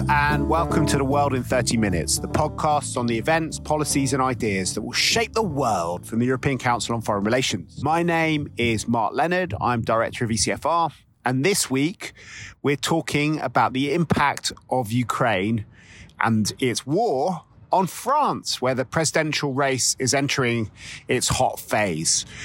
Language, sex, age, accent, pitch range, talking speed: English, male, 30-49, British, 120-150 Hz, 165 wpm